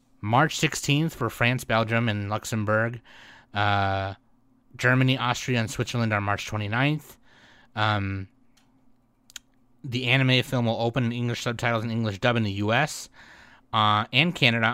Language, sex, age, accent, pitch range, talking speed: English, male, 30-49, American, 105-125 Hz, 135 wpm